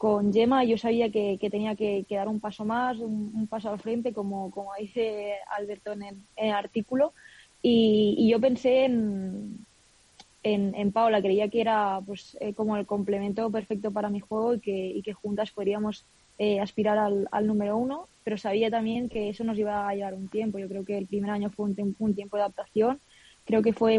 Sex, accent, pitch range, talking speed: female, Spanish, 205-220 Hz, 215 wpm